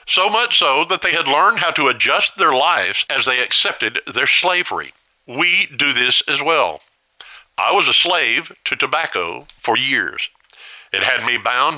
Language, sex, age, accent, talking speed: English, male, 50-69, American, 175 wpm